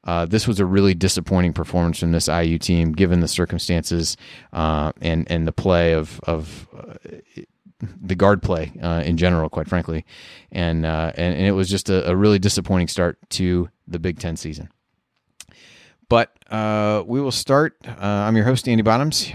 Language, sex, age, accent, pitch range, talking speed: English, male, 30-49, American, 90-110 Hz, 180 wpm